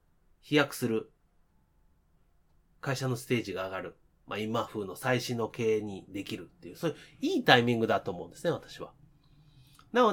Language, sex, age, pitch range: Japanese, male, 30-49, 100-160 Hz